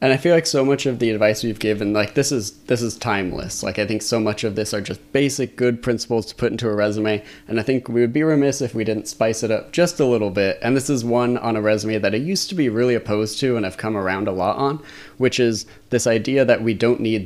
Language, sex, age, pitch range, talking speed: English, male, 20-39, 105-125 Hz, 280 wpm